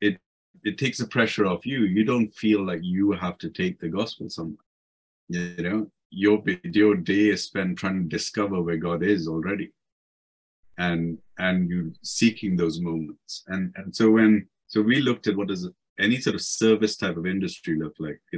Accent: Indian